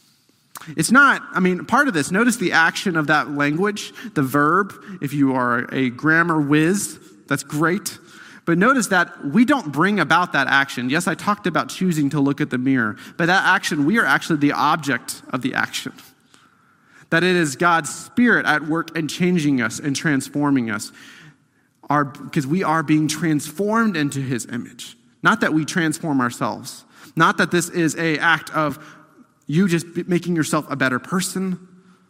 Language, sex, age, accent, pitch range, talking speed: English, male, 30-49, American, 135-175 Hz, 175 wpm